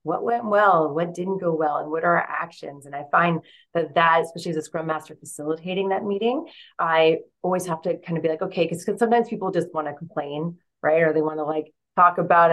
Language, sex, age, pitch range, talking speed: English, female, 30-49, 155-195 Hz, 235 wpm